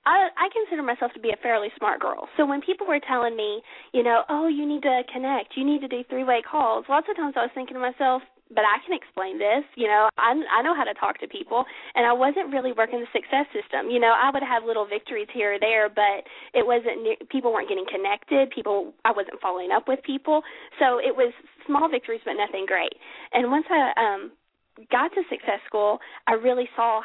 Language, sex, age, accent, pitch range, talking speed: English, female, 20-39, American, 220-295 Hz, 230 wpm